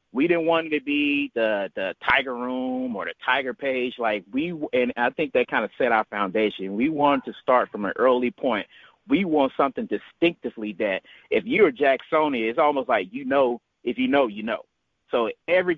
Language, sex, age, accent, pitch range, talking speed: English, male, 30-49, American, 110-140 Hz, 200 wpm